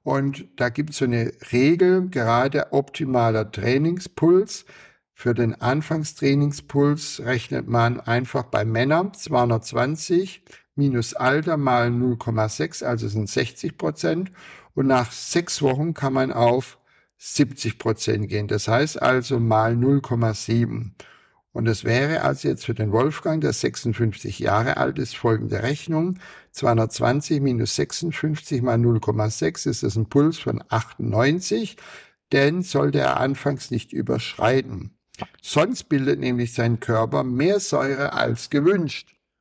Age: 60-79